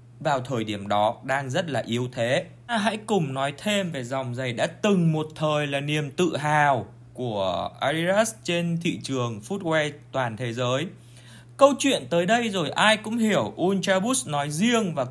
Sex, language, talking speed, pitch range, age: male, Vietnamese, 185 wpm, 130-195 Hz, 20-39